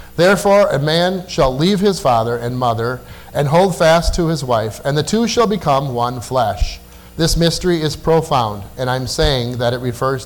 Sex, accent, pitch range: male, American, 105-150 Hz